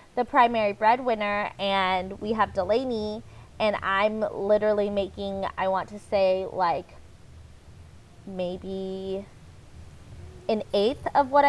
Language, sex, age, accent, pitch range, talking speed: English, female, 20-39, American, 200-255 Hz, 110 wpm